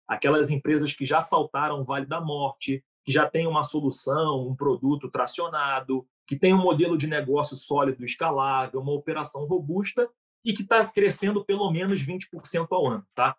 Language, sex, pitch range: Portuguese, male, 145-195 Hz